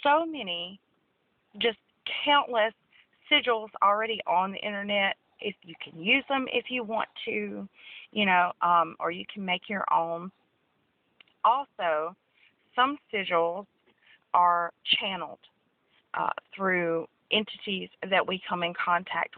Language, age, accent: English, 40-59, American